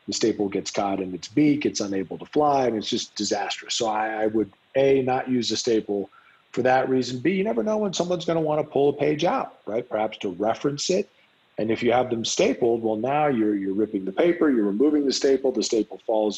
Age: 40-59